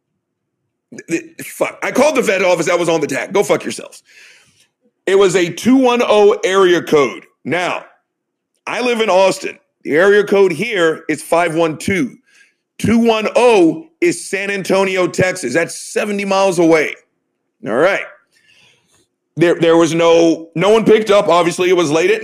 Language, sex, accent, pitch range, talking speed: English, male, American, 175-225 Hz, 150 wpm